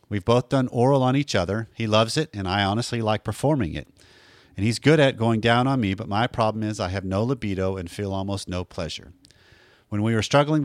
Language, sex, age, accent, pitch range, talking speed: English, male, 40-59, American, 100-125 Hz, 230 wpm